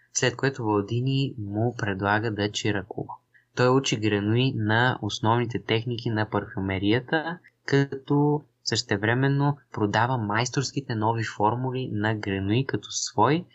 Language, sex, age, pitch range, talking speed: Bulgarian, male, 20-39, 105-125 Hz, 110 wpm